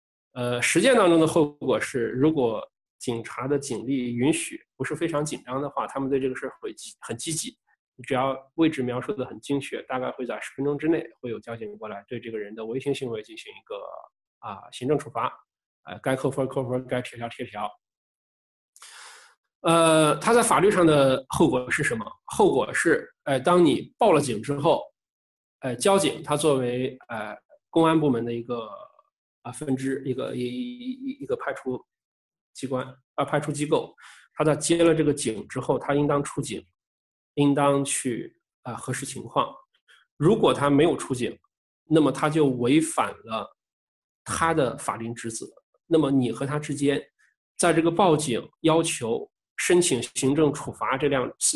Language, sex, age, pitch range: Chinese, male, 20-39, 130-165 Hz